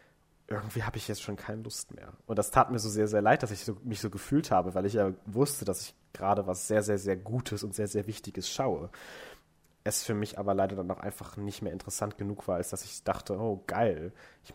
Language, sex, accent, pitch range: German, male, German, 95-105 Hz